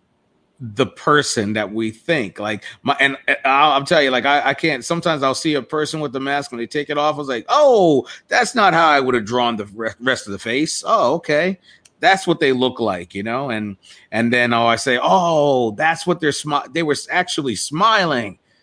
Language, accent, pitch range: English, American, 110-140 Hz